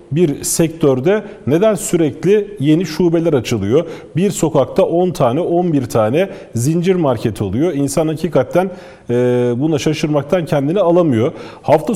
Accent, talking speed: native, 120 wpm